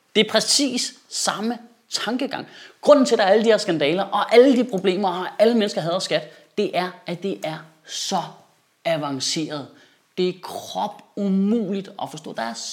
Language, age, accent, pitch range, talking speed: Danish, 20-39, native, 180-250 Hz, 180 wpm